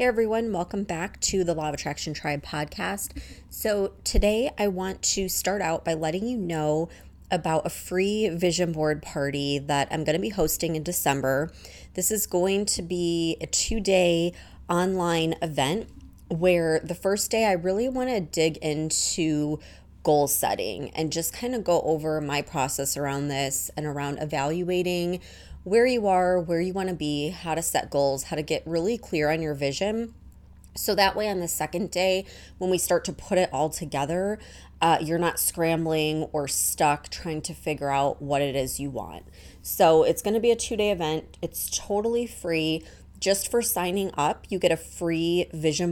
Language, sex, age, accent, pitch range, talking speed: English, female, 20-39, American, 155-190 Hz, 185 wpm